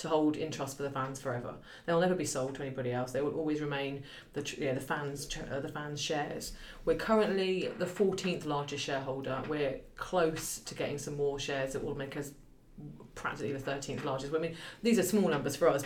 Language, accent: English, British